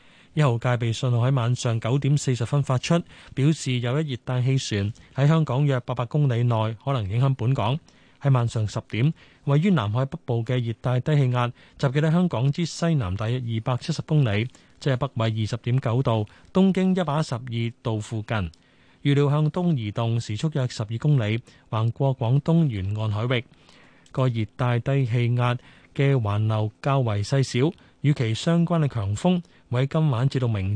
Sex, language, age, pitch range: male, Chinese, 20-39, 115-145 Hz